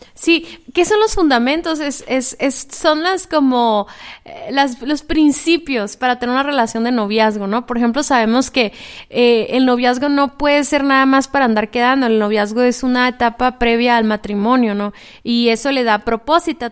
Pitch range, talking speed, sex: 235-310 Hz, 185 wpm, female